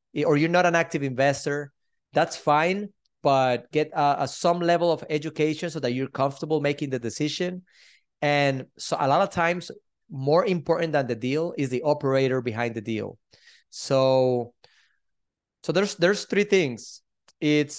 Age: 30-49